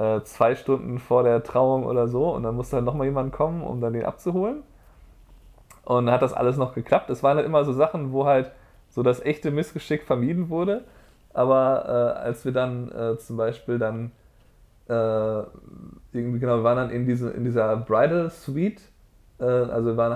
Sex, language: male, German